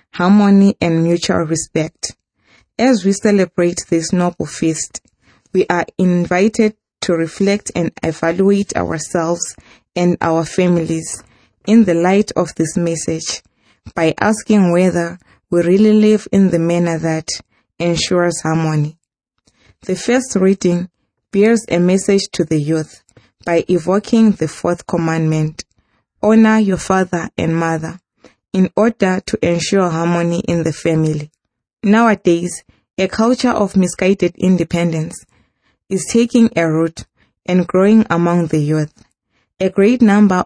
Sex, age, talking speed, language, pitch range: female, 20-39, 125 wpm, English, 165-195 Hz